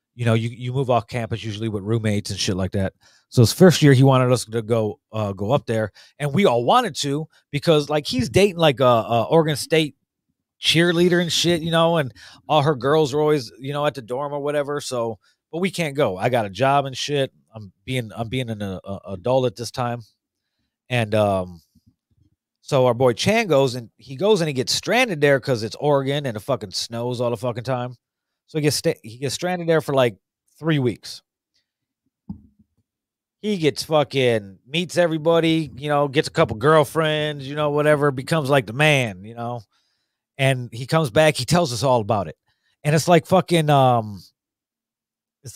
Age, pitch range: 30-49, 115-155 Hz